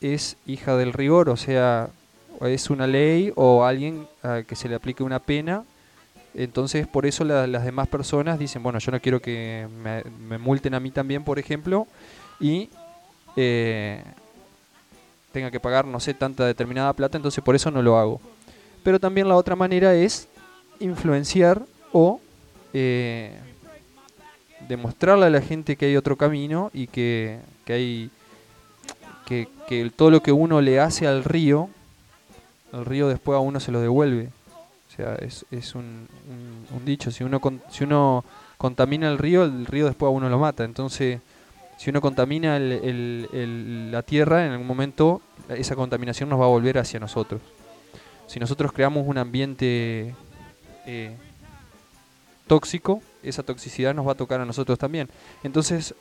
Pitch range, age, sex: 120-150 Hz, 20-39, male